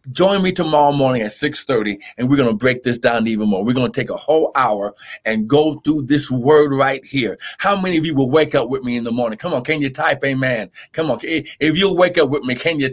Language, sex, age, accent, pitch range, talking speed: English, male, 50-69, American, 135-180 Hz, 265 wpm